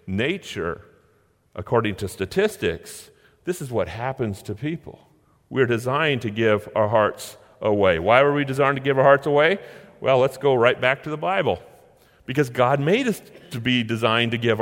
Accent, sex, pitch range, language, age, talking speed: American, male, 110-140 Hz, English, 40-59, 175 wpm